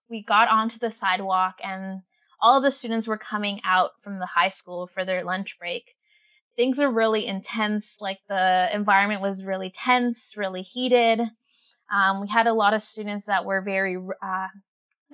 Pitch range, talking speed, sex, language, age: 195-240 Hz, 175 wpm, female, English, 20-39